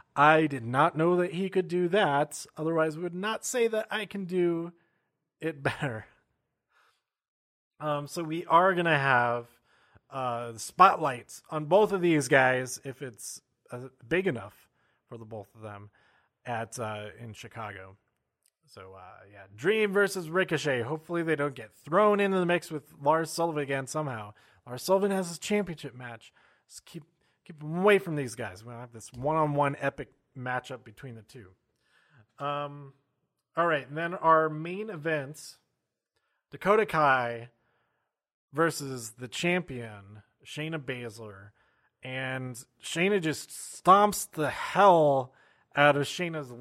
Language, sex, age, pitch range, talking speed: English, male, 30-49, 125-175 Hz, 150 wpm